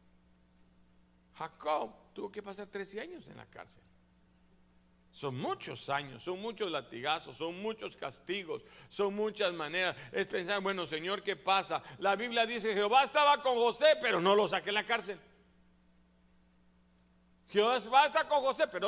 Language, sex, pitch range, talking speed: Spanish, male, 130-205 Hz, 150 wpm